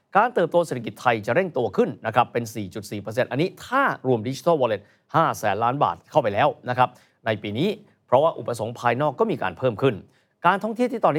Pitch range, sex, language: 110-155 Hz, male, Thai